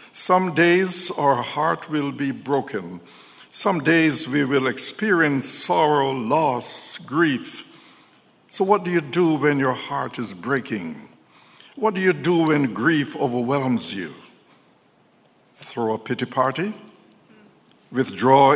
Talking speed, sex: 125 wpm, male